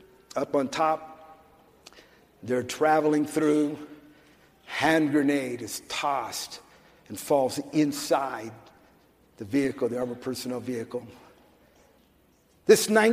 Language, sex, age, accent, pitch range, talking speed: English, male, 50-69, American, 125-170 Hz, 90 wpm